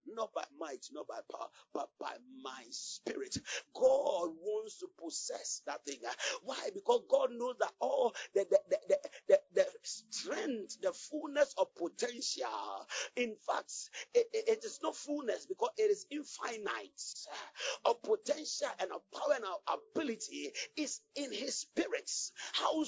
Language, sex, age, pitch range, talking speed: English, male, 50-69, 275-420 Hz, 145 wpm